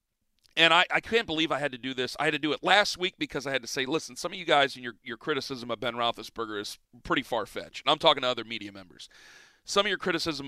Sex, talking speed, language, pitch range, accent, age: male, 275 wpm, English, 140-180 Hz, American, 40-59